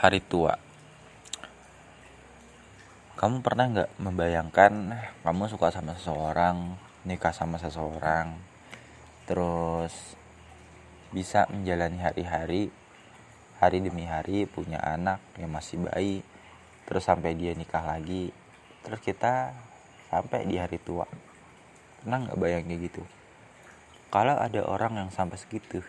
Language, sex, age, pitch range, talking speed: Indonesian, male, 20-39, 85-100 Hz, 105 wpm